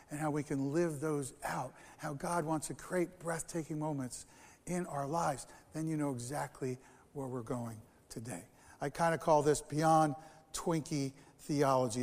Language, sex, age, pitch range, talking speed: English, male, 60-79, 145-190 Hz, 165 wpm